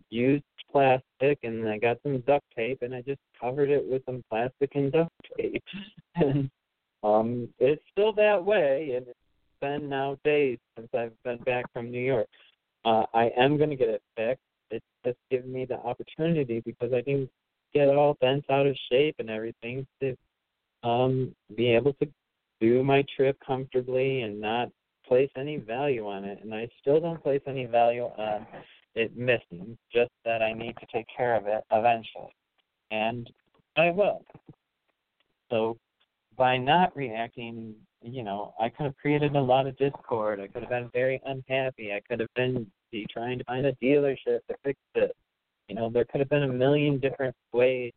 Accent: American